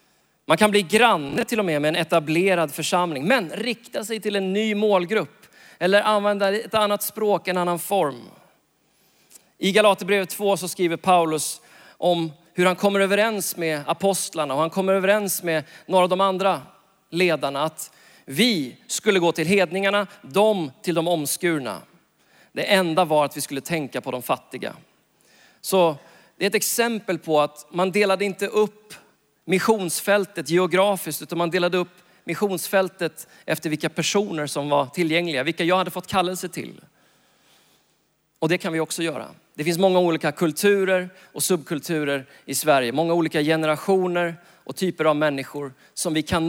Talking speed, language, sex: 160 wpm, Swedish, male